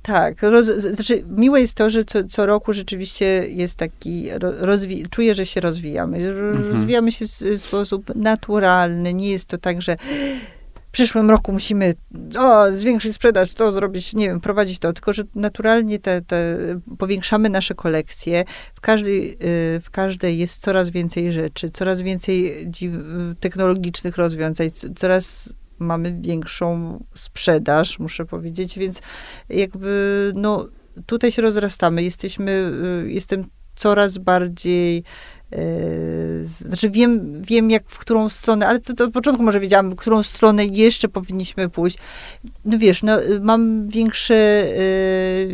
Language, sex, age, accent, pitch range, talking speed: Polish, female, 30-49, native, 175-215 Hz, 140 wpm